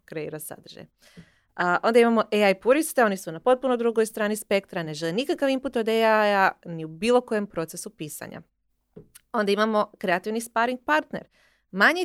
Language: Croatian